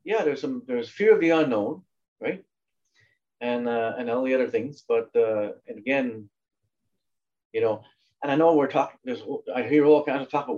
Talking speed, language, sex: 200 wpm, English, male